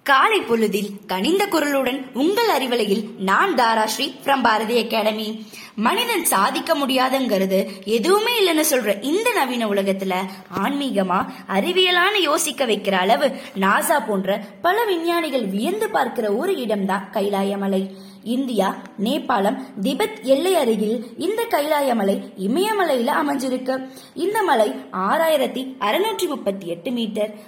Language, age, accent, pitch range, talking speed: Tamil, 20-39, native, 205-315 Hz, 100 wpm